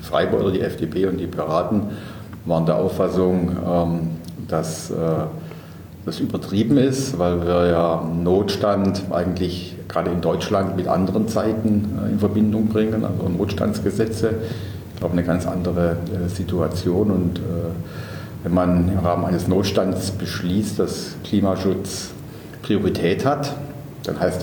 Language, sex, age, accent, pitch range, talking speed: German, male, 50-69, German, 90-110 Hz, 125 wpm